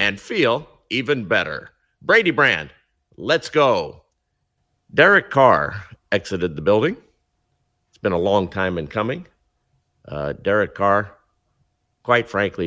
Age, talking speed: 50-69, 120 wpm